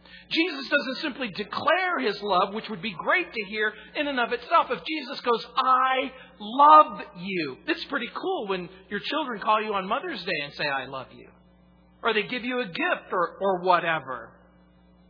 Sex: male